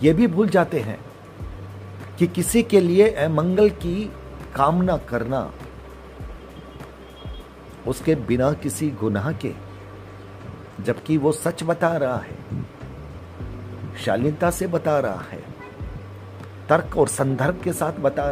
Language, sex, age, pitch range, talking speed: Hindi, male, 50-69, 100-155 Hz, 115 wpm